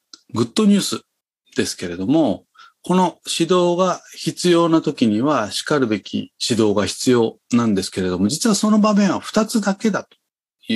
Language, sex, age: Japanese, male, 40-59